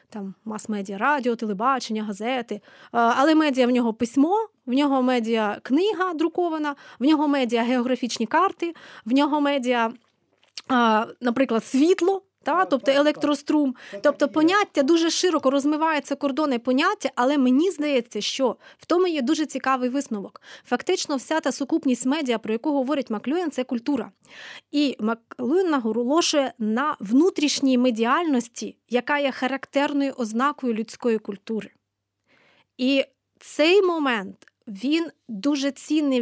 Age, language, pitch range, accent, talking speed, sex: 20-39, Ukrainian, 245-295 Hz, native, 125 wpm, female